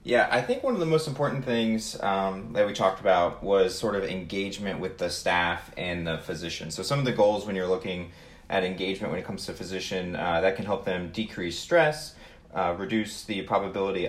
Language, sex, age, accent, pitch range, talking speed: English, male, 30-49, American, 85-110 Hz, 215 wpm